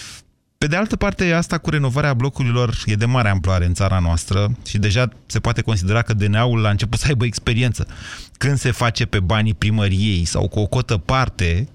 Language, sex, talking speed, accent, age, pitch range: Romanian, male, 195 wpm, native, 30-49, 105-135 Hz